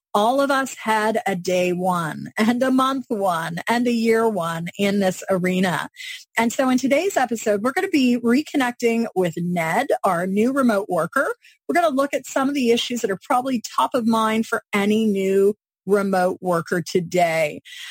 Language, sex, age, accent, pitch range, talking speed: English, female, 30-49, American, 195-265 Hz, 185 wpm